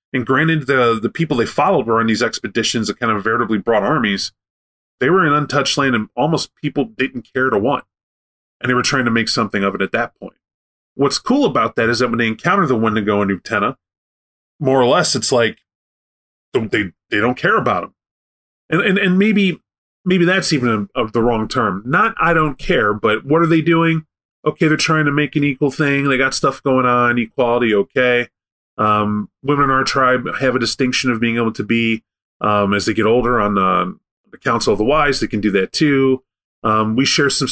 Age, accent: 30-49, American